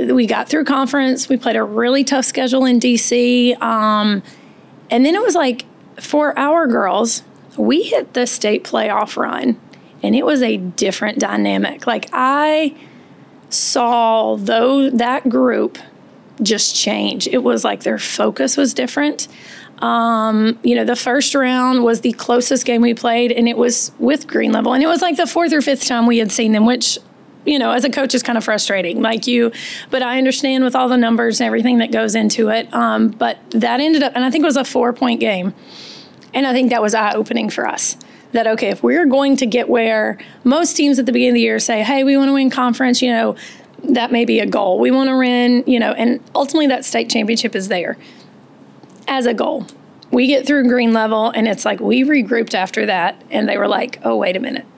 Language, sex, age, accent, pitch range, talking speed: English, female, 30-49, American, 230-270 Hz, 210 wpm